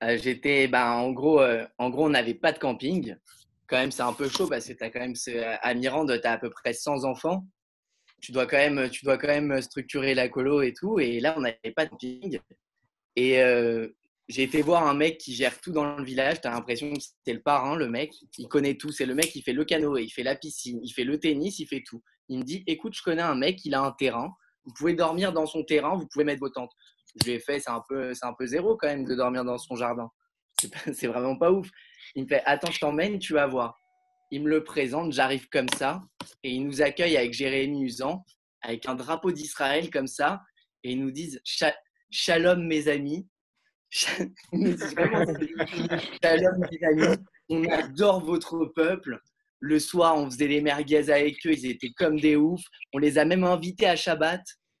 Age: 20-39